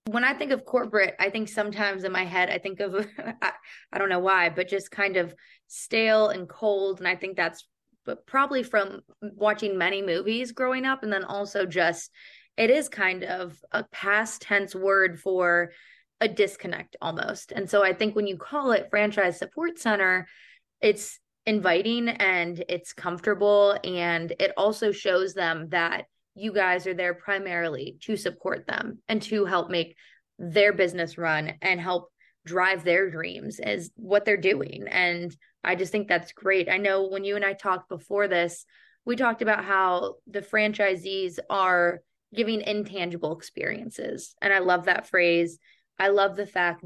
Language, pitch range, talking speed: English, 180-210 Hz, 170 wpm